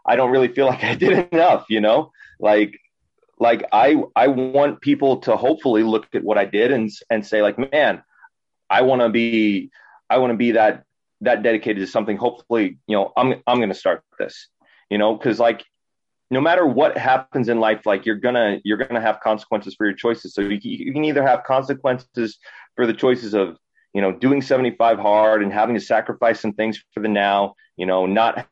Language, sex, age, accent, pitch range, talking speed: English, male, 30-49, American, 105-120 Hz, 205 wpm